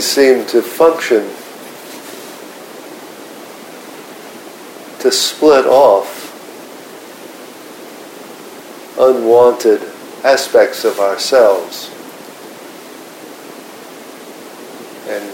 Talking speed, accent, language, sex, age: 45 wpm, American, English, male, 50-69